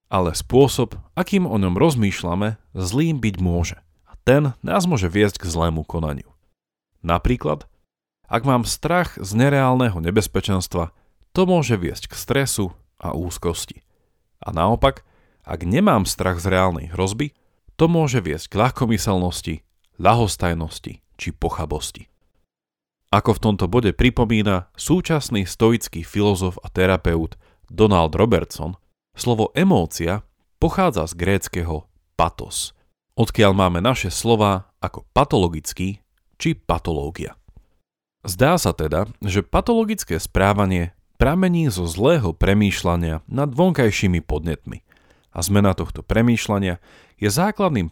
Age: 40-59